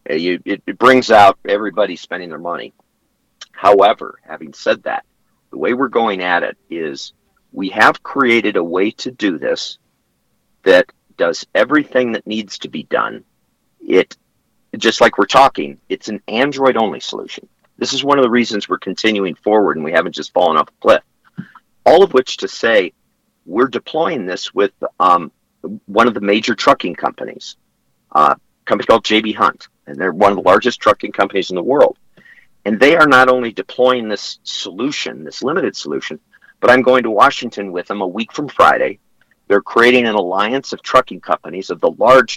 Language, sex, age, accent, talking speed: English, male, 50-69, American, 180 wpm